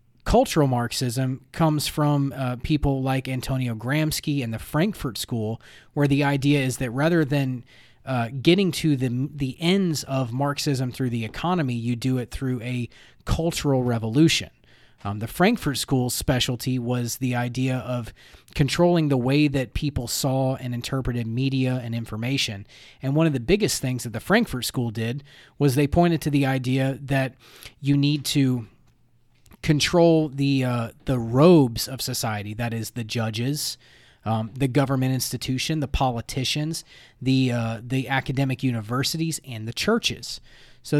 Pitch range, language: 120-150 Hz, English